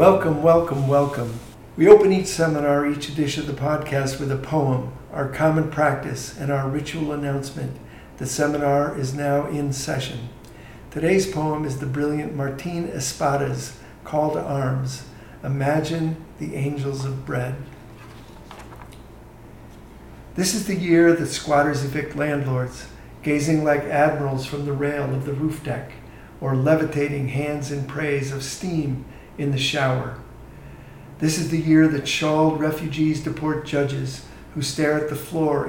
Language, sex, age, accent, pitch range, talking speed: English, male, 50-69, American, 135-155 Hz, 145 wpm